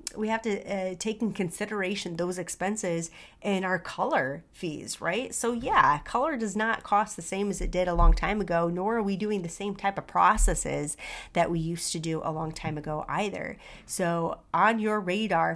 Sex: female